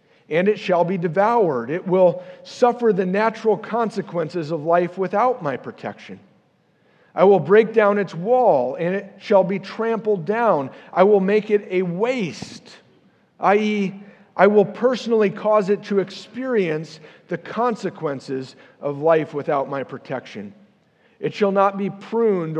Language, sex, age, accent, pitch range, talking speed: English, male, 50-69, American, 160-205 Hz, 145 wpm